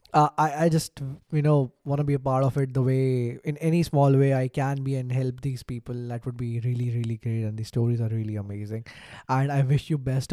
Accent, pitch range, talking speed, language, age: Indian, 120-145 Hz, 250 wpm, English, 20-39